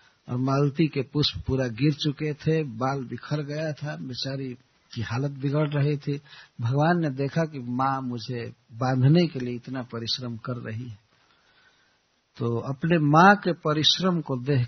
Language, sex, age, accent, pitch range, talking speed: Hindi, male, 60-79, native, 125-170 Hz, 160 wpm